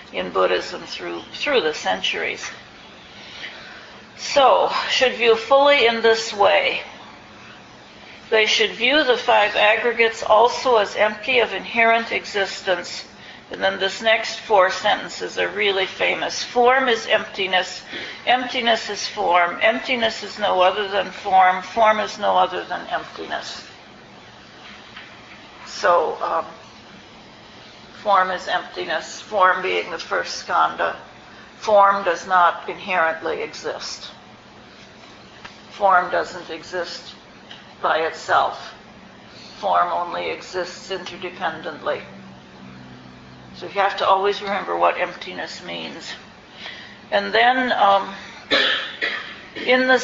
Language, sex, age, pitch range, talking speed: English, female, 60-79, 185-225 Hz, 110 wpm